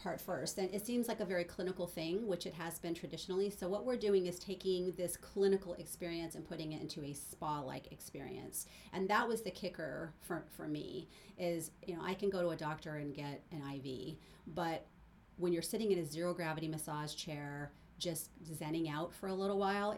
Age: 40-59